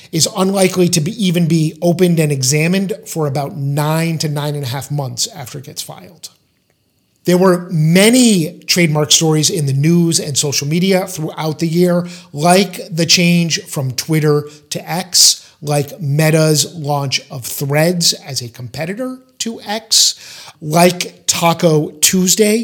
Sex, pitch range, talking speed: male, 145-180 Hz, 145 wpm